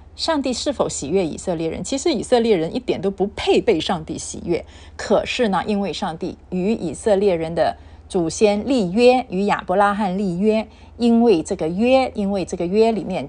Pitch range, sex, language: 185-255 Hz, female, Chinese